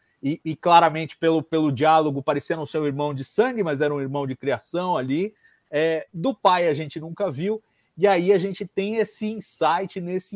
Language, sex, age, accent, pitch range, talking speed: Portuguese, male, 40-59, Brazilian, 145-195 Hz, 190 wpm